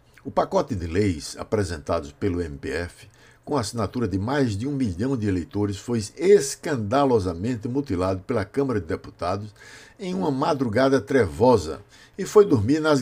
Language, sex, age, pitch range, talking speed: Portuguese, male, 60-79, 100-135 Hz, 145 wpm